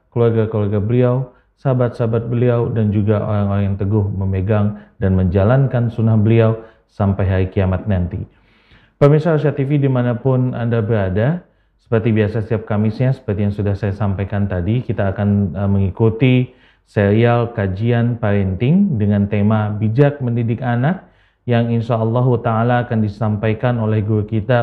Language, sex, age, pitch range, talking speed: Indonesian, male, 30-49, 105-125 Hz, 130 wpm